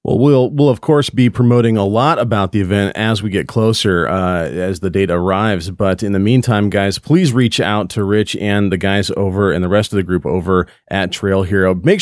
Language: English